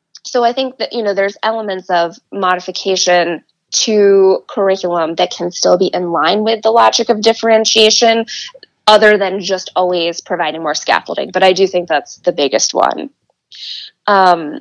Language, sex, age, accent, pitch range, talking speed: English, female, 20-39, American, 185-215 Hz, 160 wpm